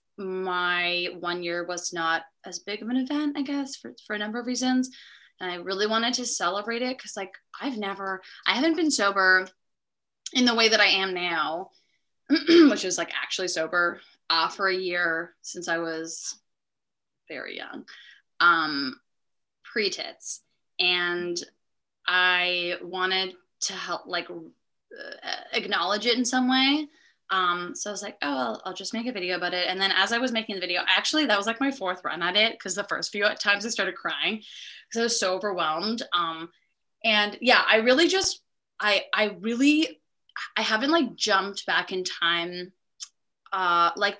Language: English